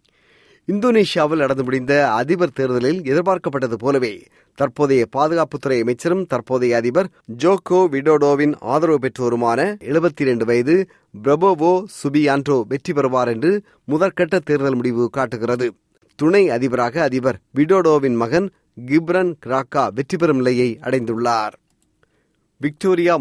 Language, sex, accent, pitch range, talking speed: Tamil, male, native, 120-165 Hz, 100 wpm